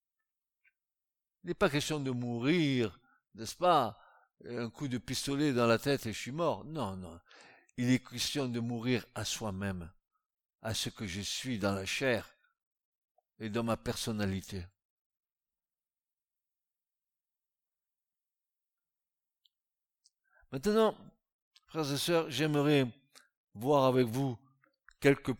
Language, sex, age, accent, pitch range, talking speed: French, male, 60-79, French, 115-145 Hz, 115 wpm